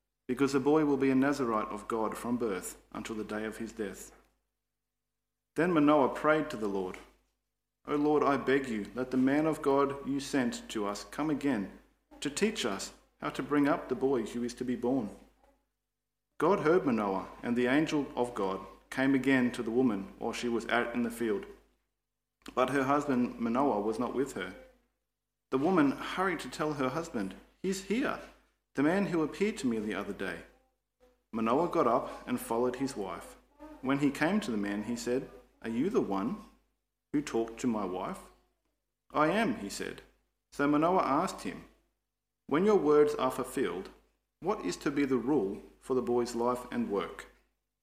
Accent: Australian